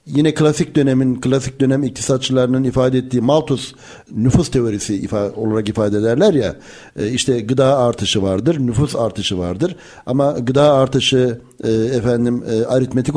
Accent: native